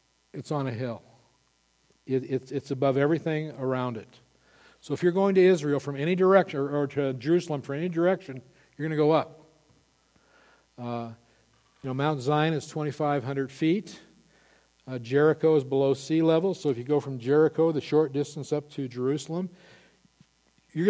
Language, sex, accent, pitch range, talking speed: English, male, American, 125-160 Hz, 165 wpm